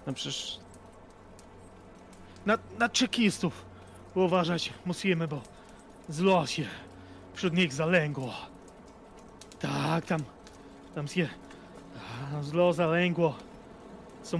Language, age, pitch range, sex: Polish, 30-49, 125-185 Hz, male